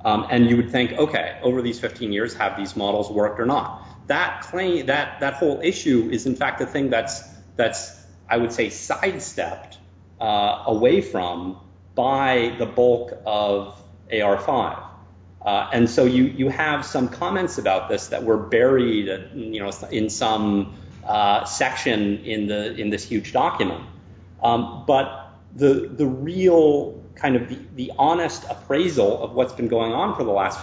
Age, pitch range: 30-49, 100-125 Hz